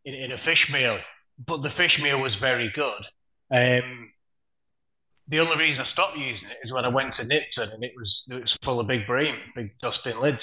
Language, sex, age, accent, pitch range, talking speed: English, male, 30-49, British, 125-150 Hz, 220 wpm